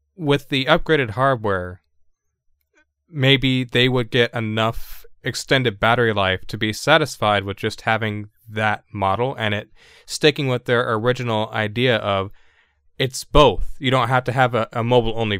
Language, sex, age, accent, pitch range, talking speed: English, male, 20-39, American, 100-135 Hz, 150 wpm